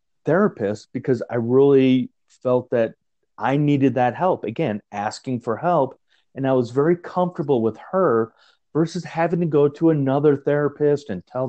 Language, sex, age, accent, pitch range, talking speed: English, male, 30-49, American, 115-145 Hz, 155 wpm